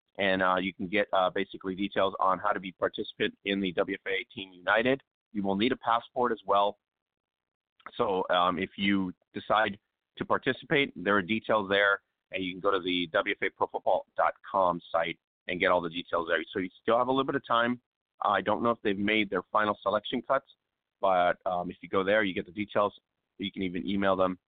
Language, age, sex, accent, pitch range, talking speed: English, 30-49, male, American, 95-110 Hz, 210 wpm